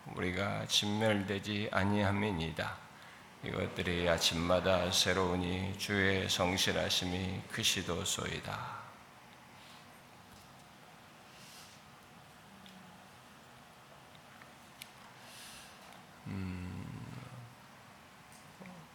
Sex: male